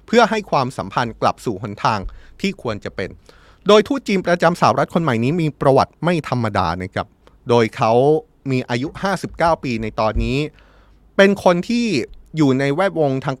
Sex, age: male, 20-39